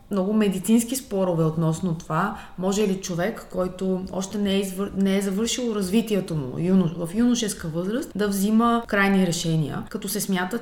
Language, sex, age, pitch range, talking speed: Bulgarian, female, 20-39, 175-230 Hz, 165 wpm